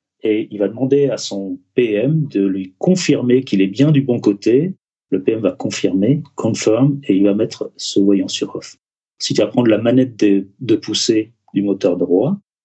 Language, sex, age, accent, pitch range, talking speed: French, male, 40-59, French, 100-130 Hz, 195 wpm